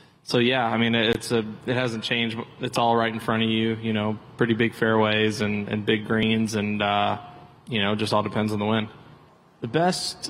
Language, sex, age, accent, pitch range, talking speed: English, male, 20-39, American, 115-130 Hz, 220 wpm